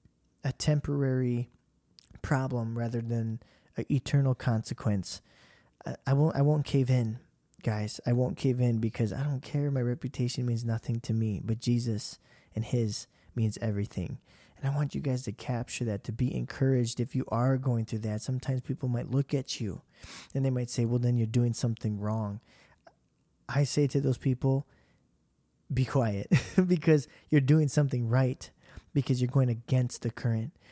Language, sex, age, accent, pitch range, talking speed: English, male, 20-39, American, 120-145 Hz, 170 wpm